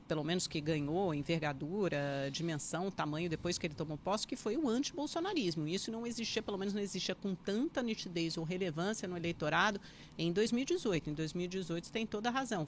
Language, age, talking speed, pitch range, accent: Portuguese, 40-59, 185 wpm, 170-220 Hz, Brazilian